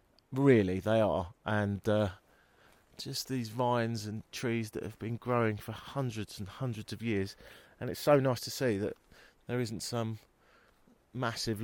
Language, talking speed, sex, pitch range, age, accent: English, 160 wpm, male, 95-125 Hz, 30-49, British